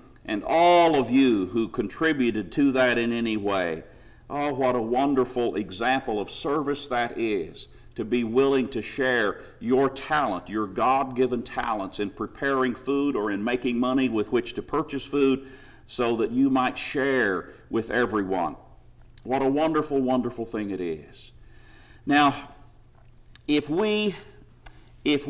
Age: 50-69